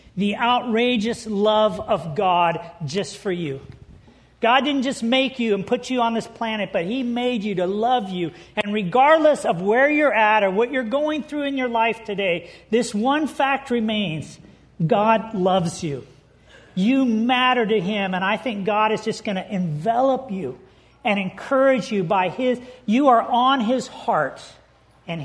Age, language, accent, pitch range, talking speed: 40-59, English, American, 205-260 Hz, 175 wpm